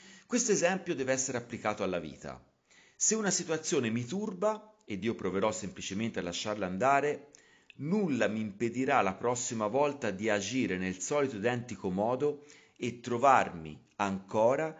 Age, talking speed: 30-49, 140 wpm